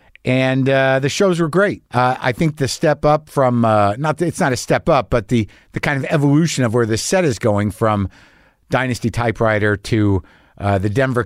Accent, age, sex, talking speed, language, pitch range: American, 50-69, male, 210 wpm, English, 105-140 Hz